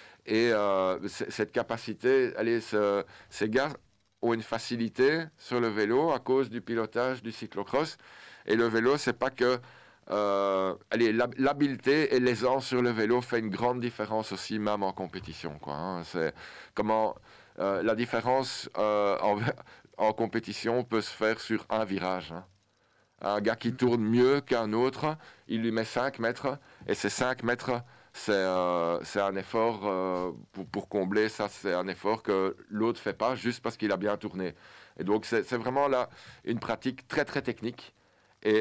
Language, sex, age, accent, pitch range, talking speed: French, male, 50-69, French, 105-125 Hz, 180 wpm